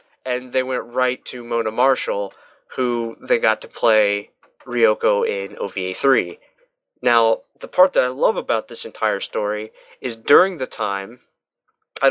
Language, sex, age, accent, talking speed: English, male, 20-39, American, 155 wpm